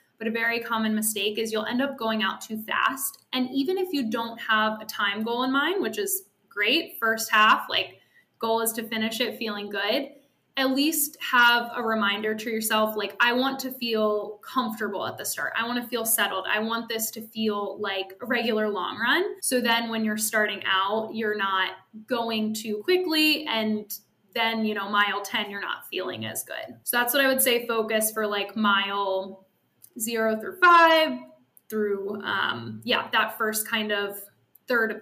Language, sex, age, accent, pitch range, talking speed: English, female, 10-29, American, 215-245 Hz, 190 wpm